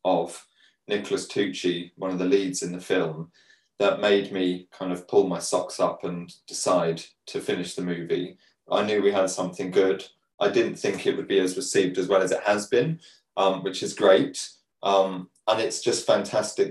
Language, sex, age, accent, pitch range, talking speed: English, male, 20-39, British, 90-105 Hz, 195 wpm